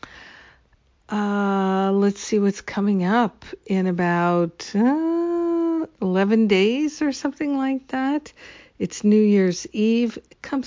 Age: 60-79